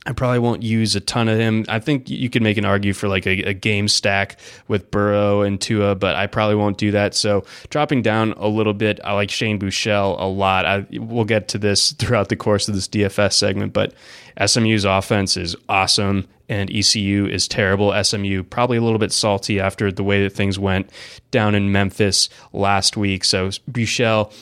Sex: male